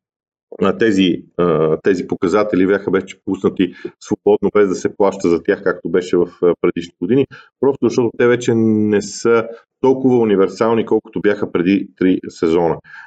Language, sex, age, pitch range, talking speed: Bulgarian, male, 40-59, 95-125 Hz, 145 wpm